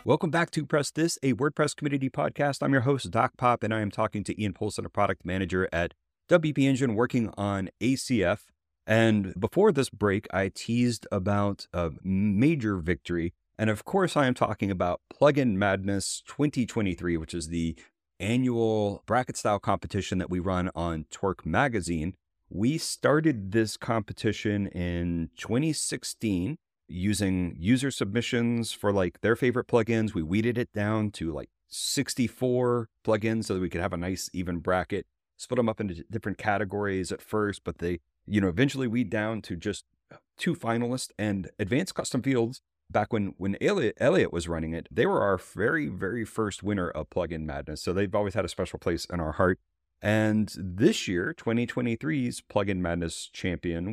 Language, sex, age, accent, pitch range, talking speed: English, male, 30-49, American, 90-120 Hz, 170 wpm